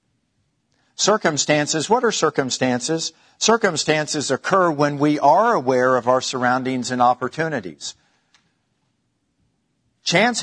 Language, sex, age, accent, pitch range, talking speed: English, male, 50-69, American, 135-175 Hz, 90 wpm